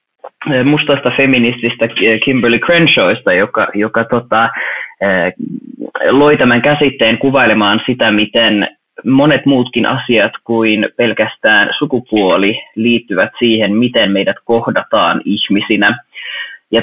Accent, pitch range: native, 115-145 Hz